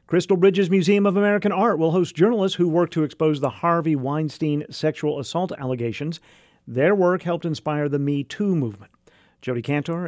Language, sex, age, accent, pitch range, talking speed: English, male, 50-69, American, 130-170 Hz, 175 wpm